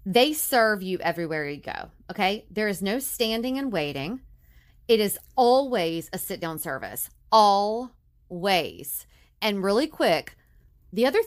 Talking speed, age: 140 wpm, 30-49